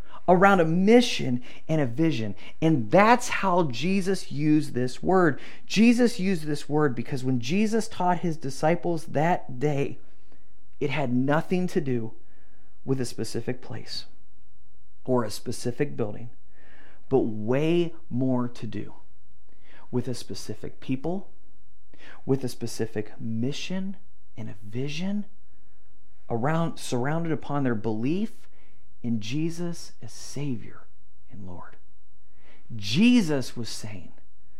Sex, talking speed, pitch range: male, 120 wpm, 115-180 Hz